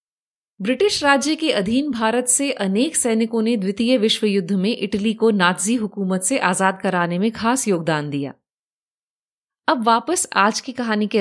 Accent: native